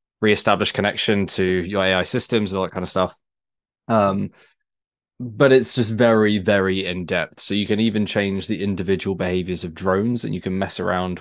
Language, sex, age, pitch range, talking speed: English, male, 20-39, 90-105 Hz, 180 wpm